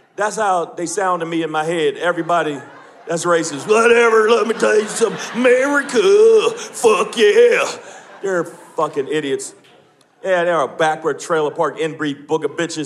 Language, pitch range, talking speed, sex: English, 180-255 Hz, 160 wpm, male